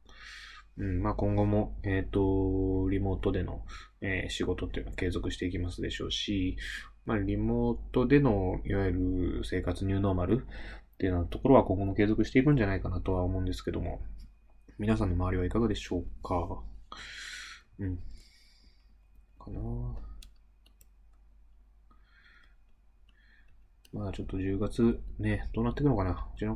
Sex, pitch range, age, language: male, 90-105 Hz, 20-39, Japanese